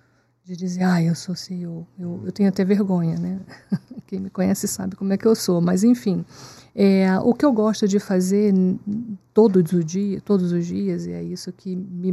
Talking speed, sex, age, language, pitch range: 205 wpm, female, 50-69, Portuguese, 185-210 Hz